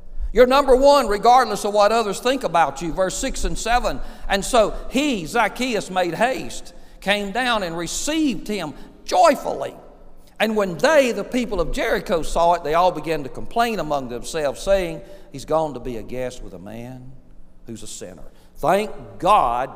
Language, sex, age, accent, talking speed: English, male, 50-69, American, 175 wpm